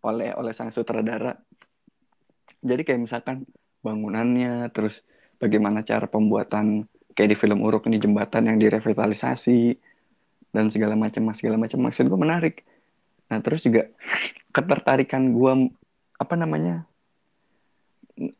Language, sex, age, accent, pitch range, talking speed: Indonesian, male, 20-39, native, 110-130 Hz, 115 wpm